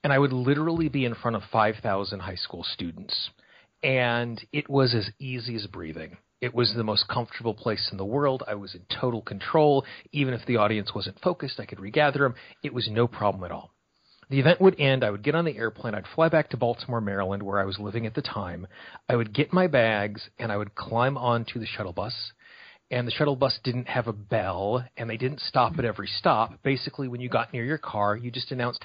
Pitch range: 105-135 Hz